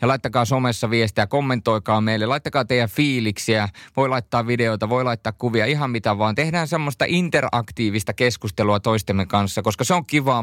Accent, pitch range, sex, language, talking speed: native, 110-130 Hz, male, Finnish, 160 wpm